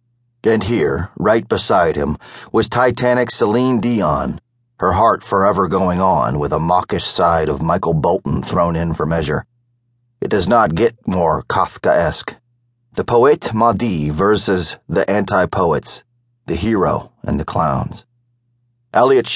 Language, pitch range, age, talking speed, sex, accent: English, 100-120 Hz, 40-59, 135 wpm, male, American